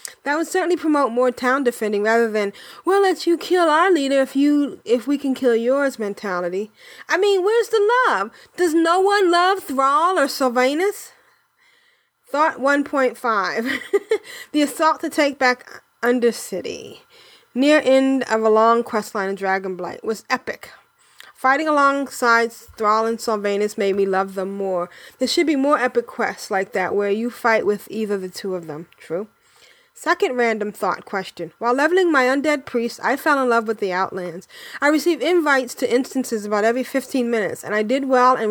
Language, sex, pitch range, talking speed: English, female, 215-305 Hz, 175 wpm